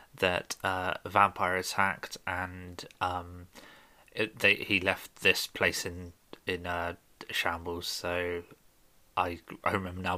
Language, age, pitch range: English, 20-39, 90-105 Hz